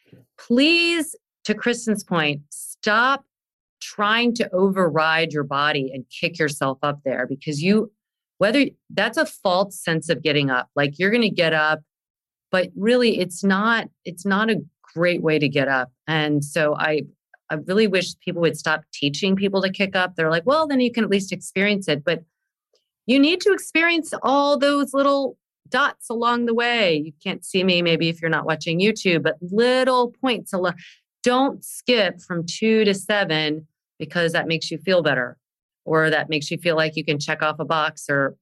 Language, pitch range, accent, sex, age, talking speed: English, 155-220 Hz, American, female, 30-49, 185 wpm